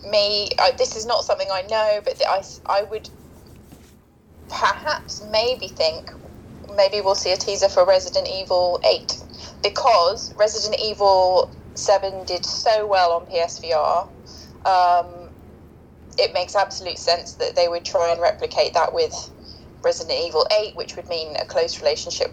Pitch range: 170-275 Hz